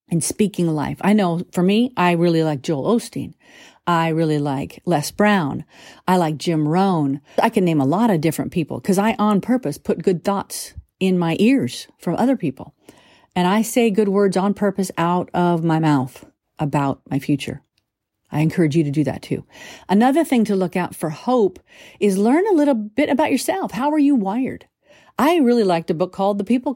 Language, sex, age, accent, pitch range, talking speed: English, female, 50-69, American, 165-245 Hz, 200 wpm